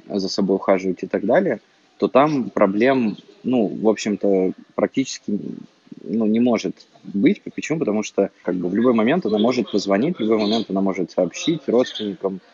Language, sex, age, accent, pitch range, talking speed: Russian, male, 20-39, native, 95-115 Hz, 170 wpm